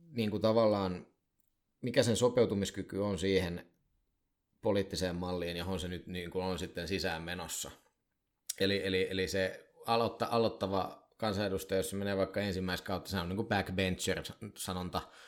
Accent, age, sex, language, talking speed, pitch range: native, 20-39, male, Finnish, 140 wpm, 85-100 Hz